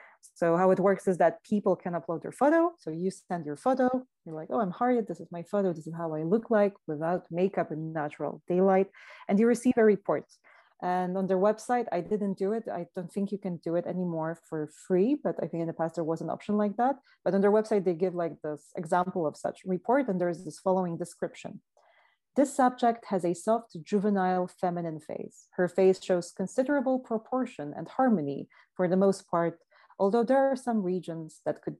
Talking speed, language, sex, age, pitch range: 215 wpm, English, female, 30-49, 170-220 Hz